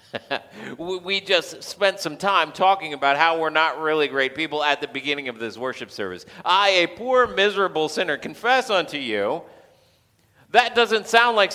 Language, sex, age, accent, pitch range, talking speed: English, male, 40-59, American, 105-135 Hz, 165 wpm